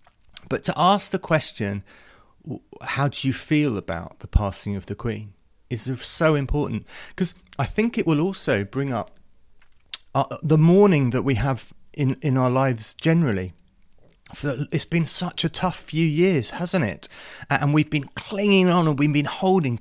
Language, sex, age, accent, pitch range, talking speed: English, male, 30-49, British, 105-150 Hz, 165 wpm